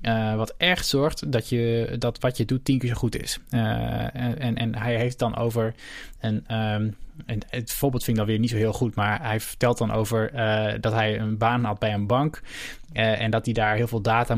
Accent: Dutch